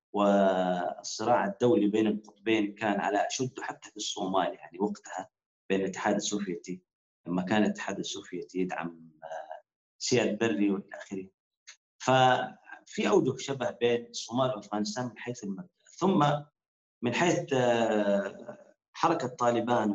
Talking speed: 110 wpm